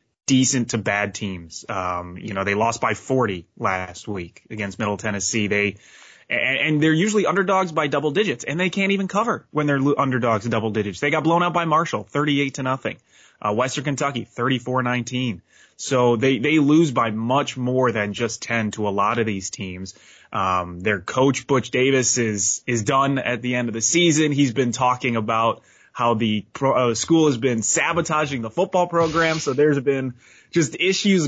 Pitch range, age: 115-145 Hz, 20-39